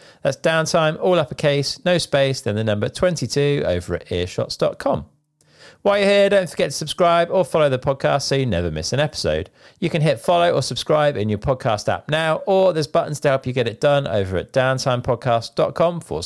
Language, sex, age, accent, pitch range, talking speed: English, male, 40-59, British, 120-165 Hz, 200 wpm